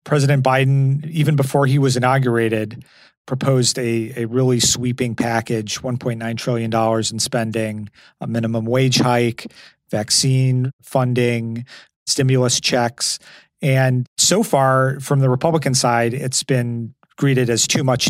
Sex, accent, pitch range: male, American, 115-130 Hz